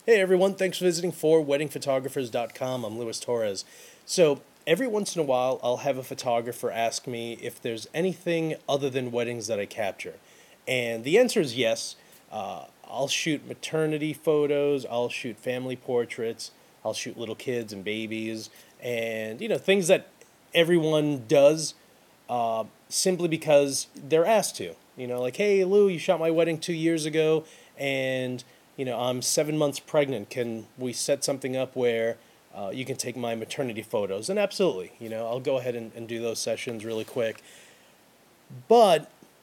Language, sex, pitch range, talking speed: English, male, 120-155 Hz, 170 wpm